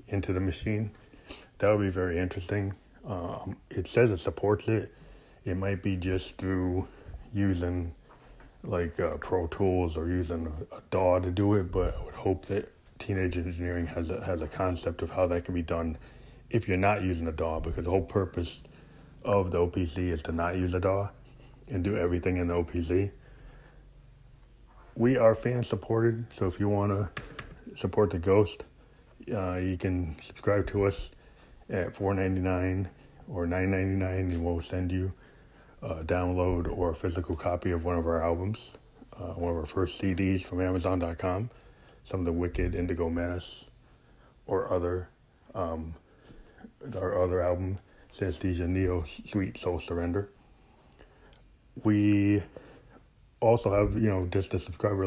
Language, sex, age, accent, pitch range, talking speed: English, male, 30-49, American, 85-100 Hz, 155 wpm